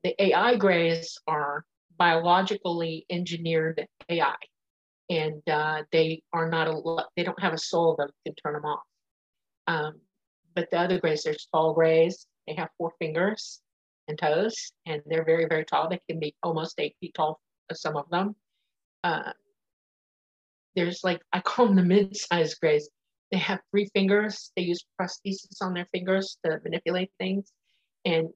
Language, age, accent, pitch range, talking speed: English, 50-69, American, 160-190 Hz, 160 wpm